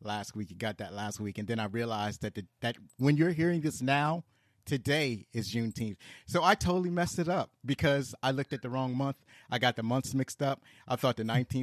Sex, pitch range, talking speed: male, 110-140 Hz, 225 wpm